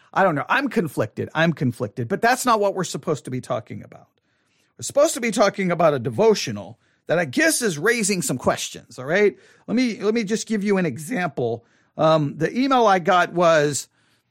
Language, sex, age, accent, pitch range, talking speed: English, male, 40-59, American, 170-235 Hz, 205 wpm